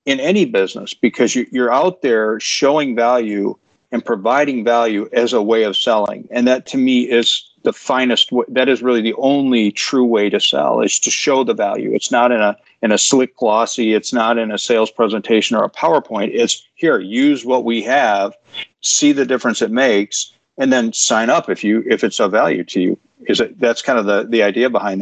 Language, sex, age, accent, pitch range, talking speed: English, male, 50-69, American, 115-125 Hz, 210 wpm